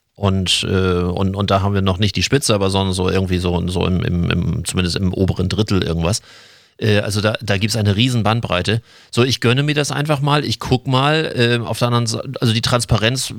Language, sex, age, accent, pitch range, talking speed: German, male, 40-59, German, 105-125 Hz, 235 wpm